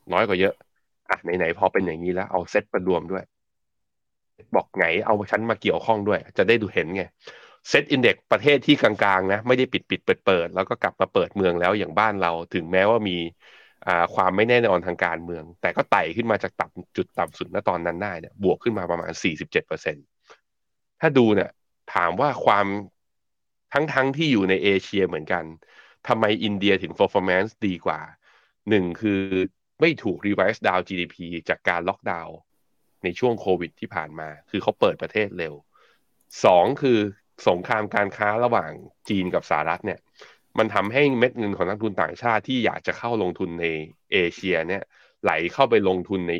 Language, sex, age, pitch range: Thai, male, 20-39, 85-110 Hz